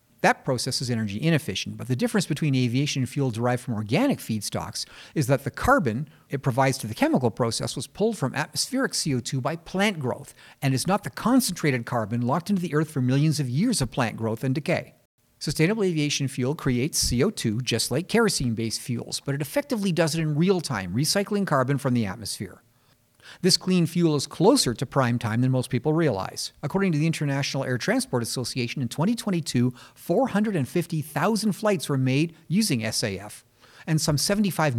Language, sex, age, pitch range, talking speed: English, male, 50-69, 125-170 Hz, 180 wpm